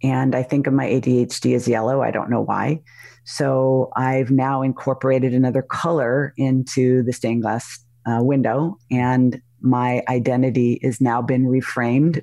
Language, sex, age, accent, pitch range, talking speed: English, female, 40-59, American, 120-135 Hz, 150 wpm